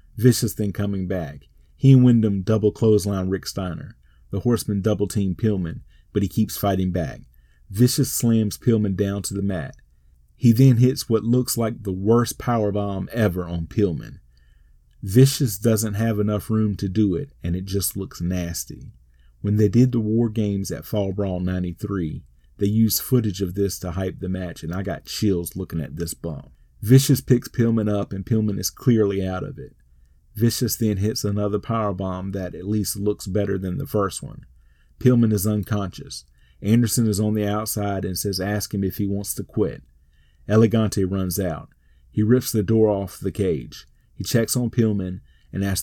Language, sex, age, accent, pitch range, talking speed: English, male, 40-59, American, 90-110 Hz, 180 wpm